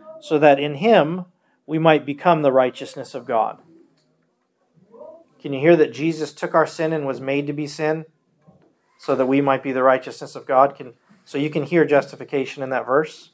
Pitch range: 140-180 Hz